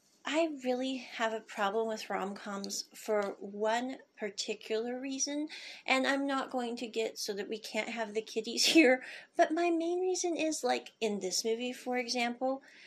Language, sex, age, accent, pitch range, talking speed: English, female, 40-59, American, 220-275 Hz, 170 wpm